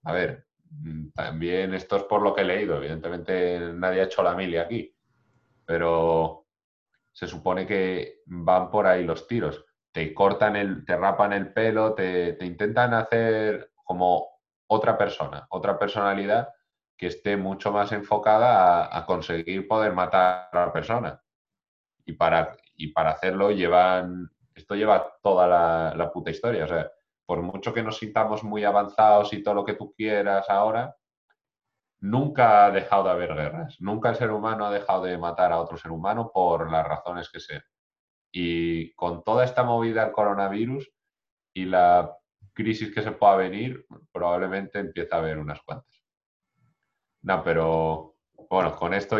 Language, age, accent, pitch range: Spanish, 30-49, Spanish, 85-105 Hz